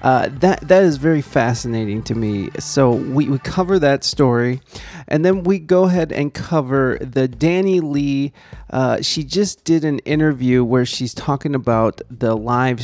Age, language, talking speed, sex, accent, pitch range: 30-49, English, 170 wpm, male, American, 120-160 Hz